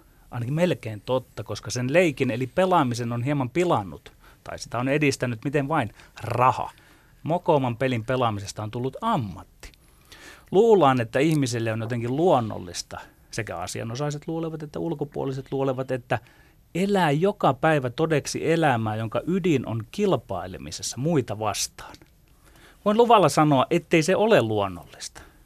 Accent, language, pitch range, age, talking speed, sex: native, Finnish, 115-165 Hz, 30-49, 130 wpm, male